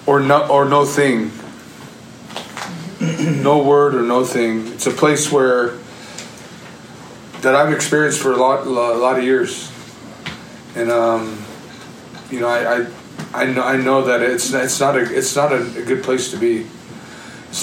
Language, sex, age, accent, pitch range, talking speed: English, male, 30-49, American, 115-140 Hz, 165 wpm